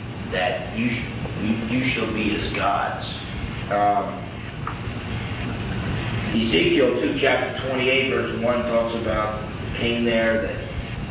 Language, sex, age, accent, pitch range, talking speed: English, male, 40-59, American, 105-125 Hz, 115 wpm